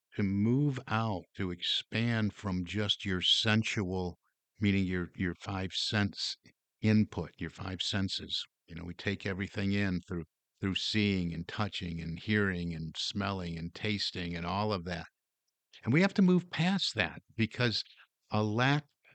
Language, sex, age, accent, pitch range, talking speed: English, male, 50-69, American, 90-115 Hz, 155 wpm